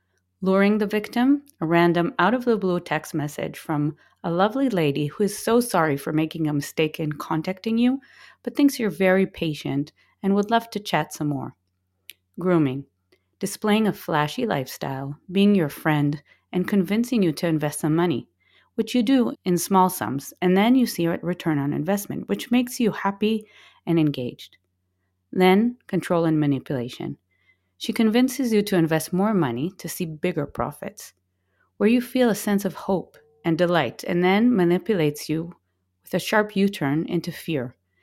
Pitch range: 145-200 Hz